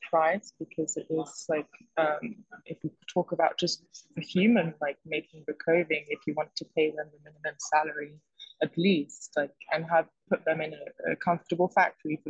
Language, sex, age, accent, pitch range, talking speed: English, female, 20-39, British, 155-175 Hz, 190 wpm